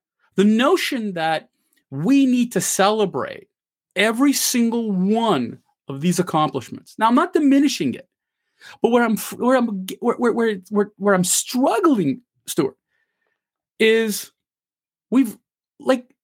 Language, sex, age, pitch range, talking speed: English, male, 30-49, 175-245 Hz, 120 wpm